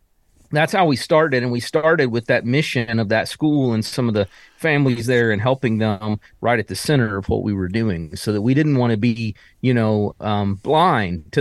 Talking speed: 225 wpm